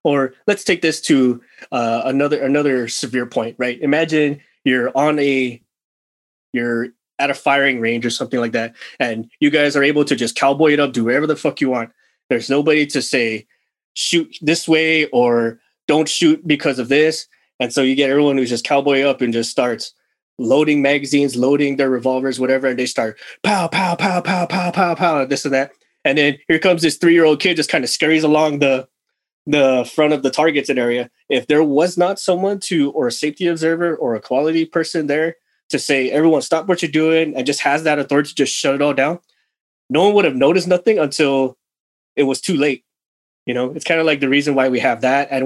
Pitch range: 130-160 Hz